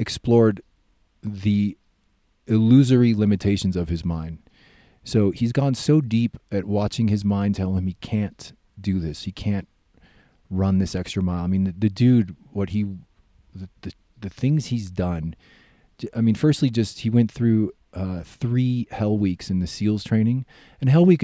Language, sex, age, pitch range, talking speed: English, male, 30-49, 90-115 Hz, 165 wpm